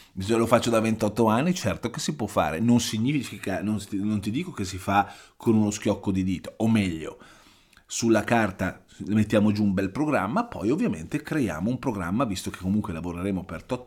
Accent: native